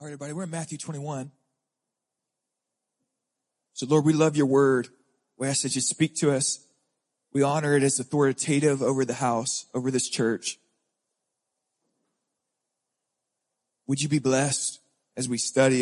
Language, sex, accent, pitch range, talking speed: English, male, American, 130-150 Hz, 145 wpm